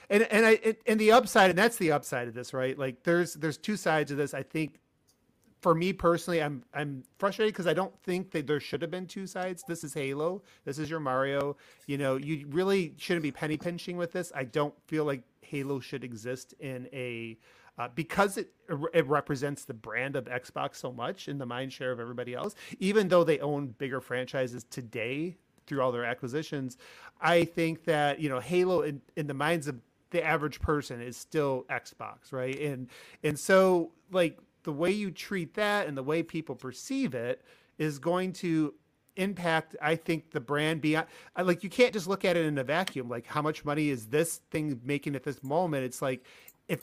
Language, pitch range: English, 135-175 Hz